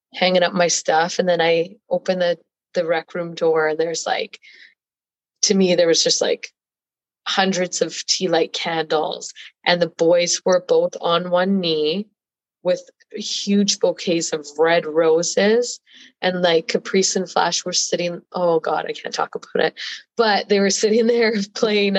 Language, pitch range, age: English, 170-220 Hz, 20-39